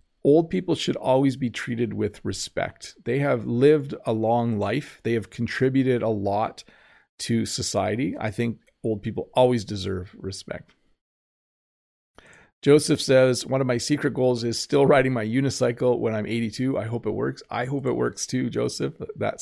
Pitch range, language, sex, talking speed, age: 110-135 Hz, English, male, 165 wpm, 40-59